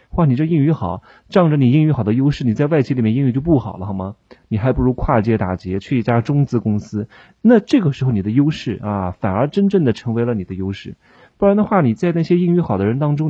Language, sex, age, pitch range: Chinese, male, 30-49, 110-170 Hz